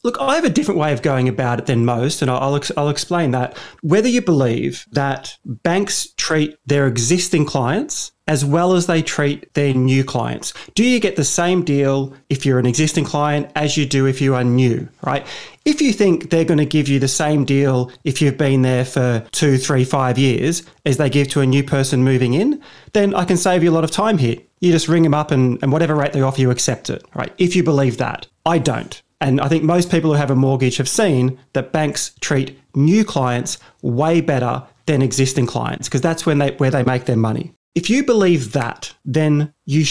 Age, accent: 30-49, Australian